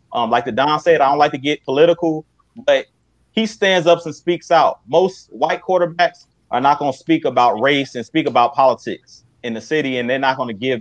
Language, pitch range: English, 130-165 Hz